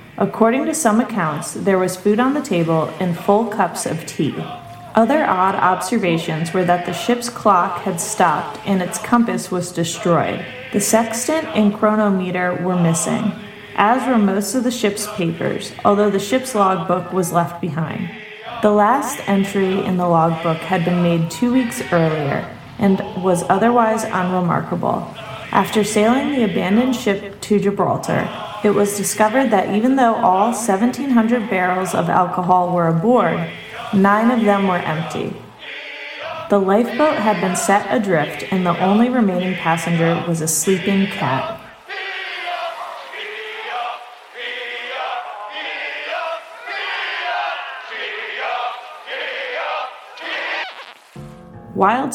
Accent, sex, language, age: American, female, English, 30-49